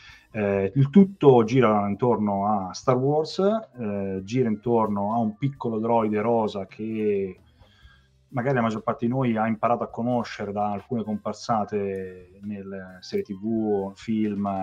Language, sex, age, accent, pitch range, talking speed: Italian, male, 30-49, native, 95-115 Hz, 140 wpm